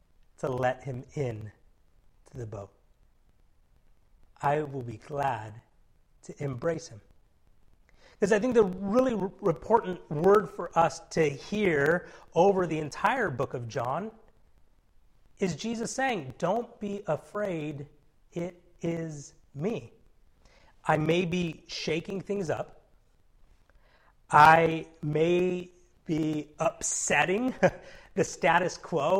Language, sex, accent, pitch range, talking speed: English, male, American, 135-195 Hz, 110 wpm